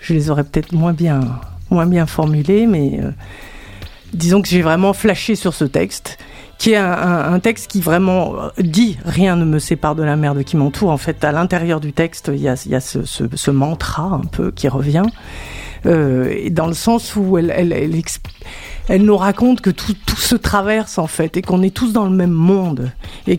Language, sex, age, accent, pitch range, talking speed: French, female, 50-69, French, 150-185 Hz, 230 wpm